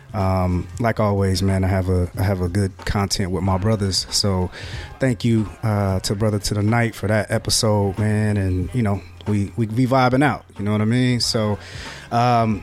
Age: 20-39